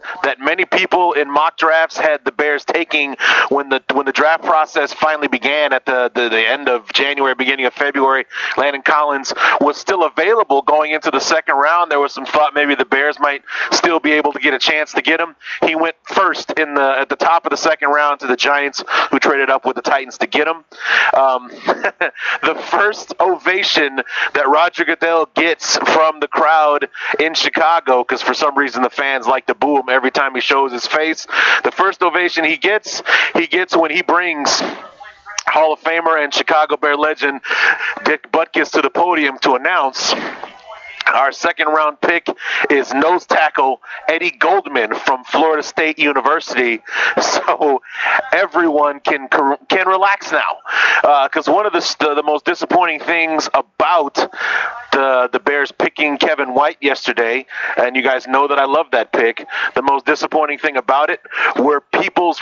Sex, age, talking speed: male, 30-49, 180 wpm